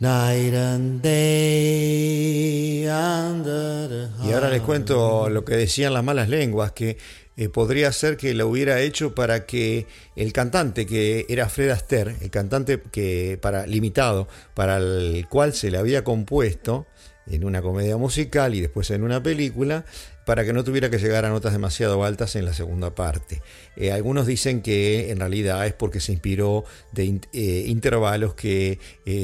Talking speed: 160 wpm